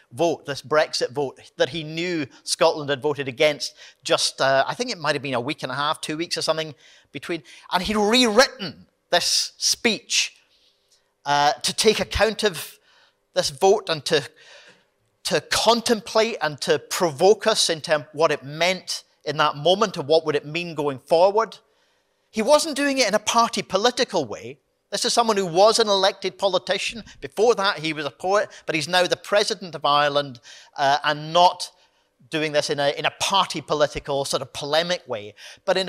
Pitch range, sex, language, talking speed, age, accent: 150-215 Hz, male, English, 180 wpm, 40-59, British